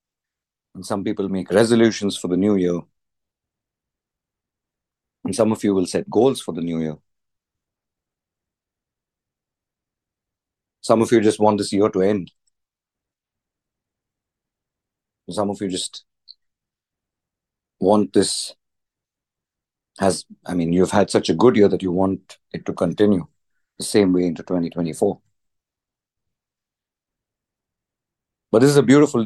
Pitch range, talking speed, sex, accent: 95-110 Hz, 125 wpm, male, Indian